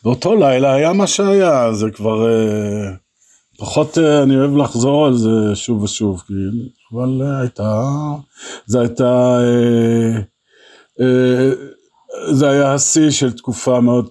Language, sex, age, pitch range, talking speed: Hebrew, male, 50-69, 100-125 Hz, 105 wpm